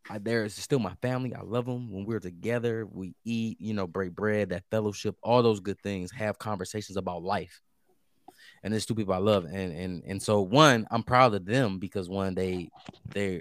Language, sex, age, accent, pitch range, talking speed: English, male, 20-39, American, 95-115 Hz, 200 wpm